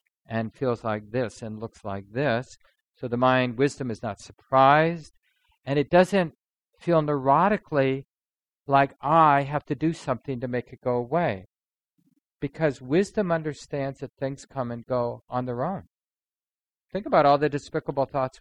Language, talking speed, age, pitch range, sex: English, 155 wpm, 50-69, 115-145 Hz, male